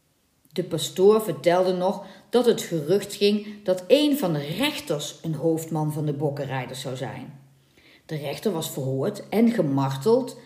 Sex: female